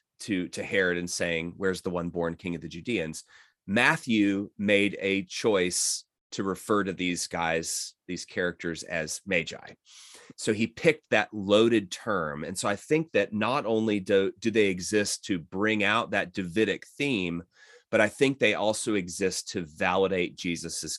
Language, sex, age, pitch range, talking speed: English, male, 30-49, 85-105 Hz, 165 wpm